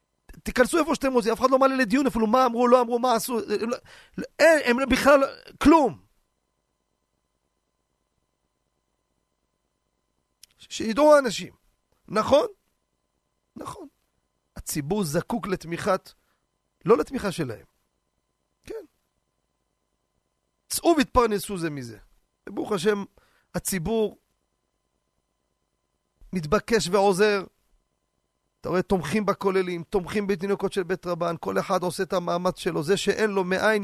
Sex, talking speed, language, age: male, 110 wpm, Hebrew, 40-59